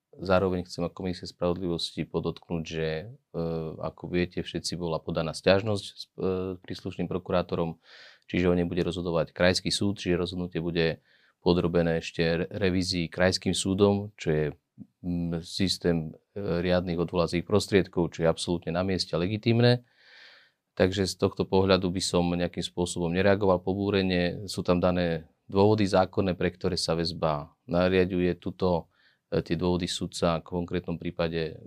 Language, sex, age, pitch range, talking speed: Slovak, male, 30-49, 85-95 Hz, 135 wpm